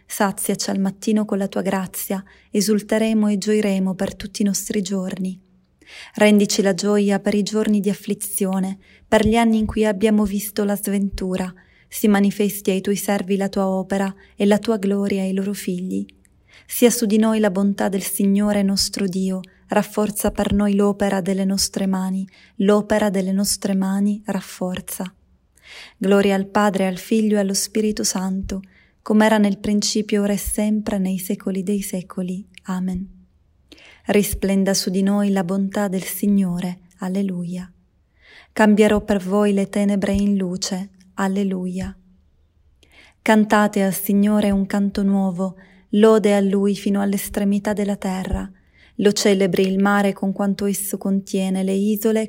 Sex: female